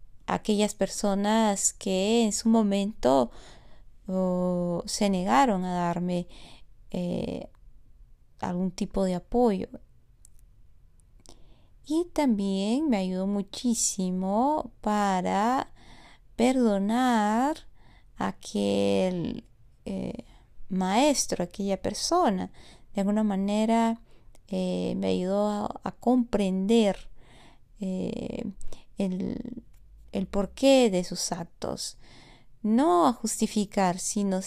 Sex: female